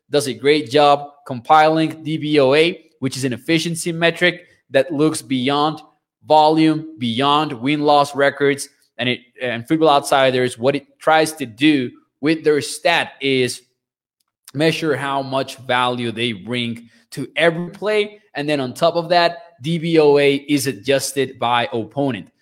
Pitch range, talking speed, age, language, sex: 135-165 Hz, 140 wpm, 20-39, English, male